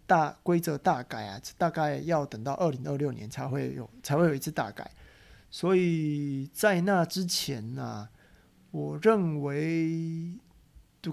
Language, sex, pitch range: Chinese, male, 140-180 Hz